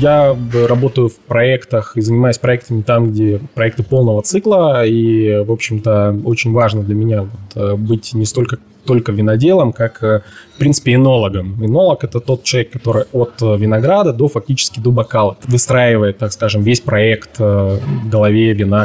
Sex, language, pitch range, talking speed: male, Russian, 110-135 Hz, 150 wpm